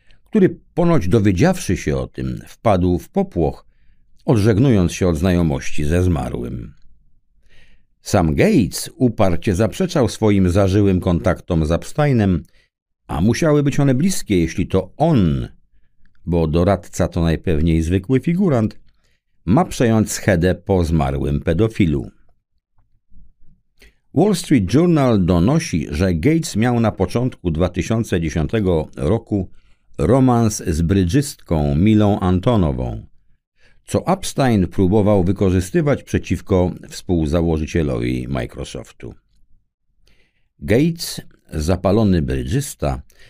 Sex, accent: male, native